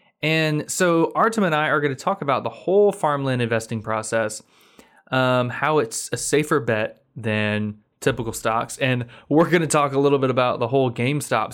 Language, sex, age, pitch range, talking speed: English, male, 20-39, 115-155 Hz, 185 wpm